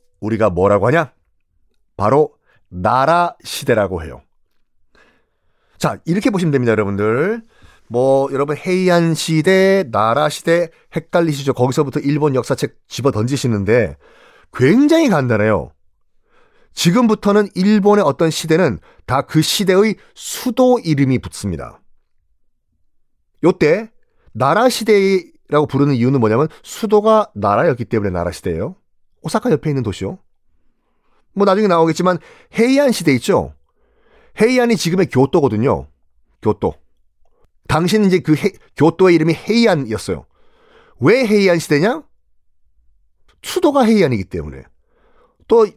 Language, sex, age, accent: Korean, male, 40-59, native